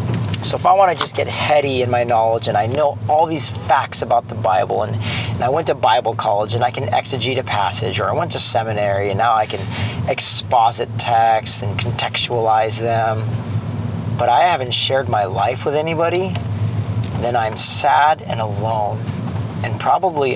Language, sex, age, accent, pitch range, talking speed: English, male, 40-59, American, 105-125 Hz, 180 wpm